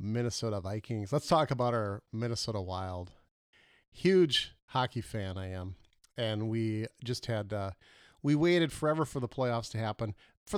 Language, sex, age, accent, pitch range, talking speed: English, male, 40-59, American, 105-145 Hz, 155 wpm